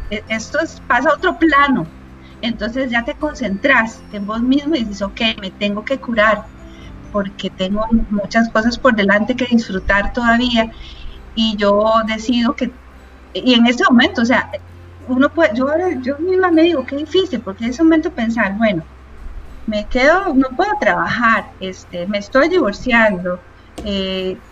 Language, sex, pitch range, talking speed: Spanish, female, 200-260 Hz, 160 wpm